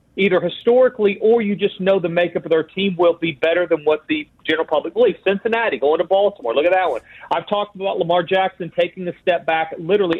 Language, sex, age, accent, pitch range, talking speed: English, male, 40-59, American, 165-210 Hz, 225 wpm